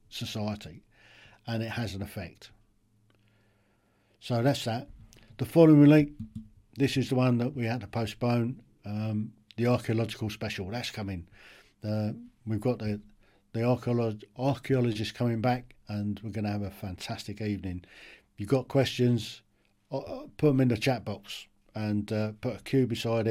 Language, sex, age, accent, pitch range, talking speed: English, male, 50-69, British, 105-125 Hz, 160 wpm